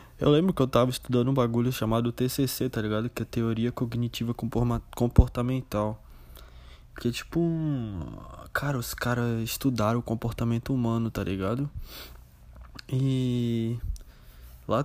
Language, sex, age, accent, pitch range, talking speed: Portuguese, male, 20-39, Brazilian, 105-125 Hz, 135 wpm